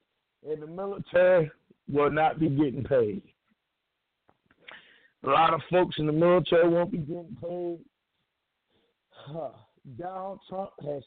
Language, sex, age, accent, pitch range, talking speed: English, male, 50-69, American, 150-190 Hz, 125 wpm